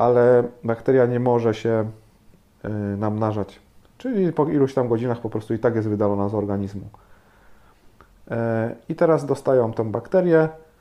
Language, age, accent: Polish, 30-49, native